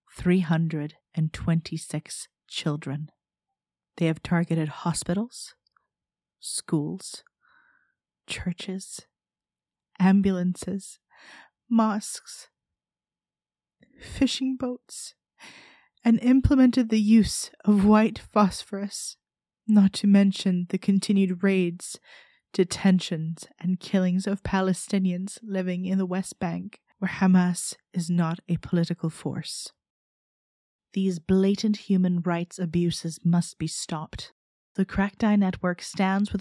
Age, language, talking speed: 20-39, English, 90 wpm